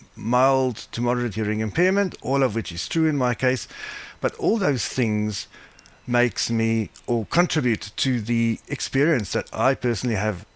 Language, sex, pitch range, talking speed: English, male, 105-130 Hz, 160 wpm